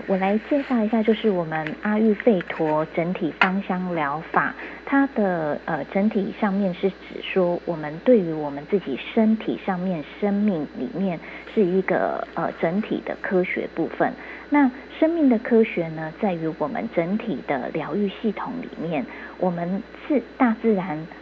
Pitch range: 180-245 Hz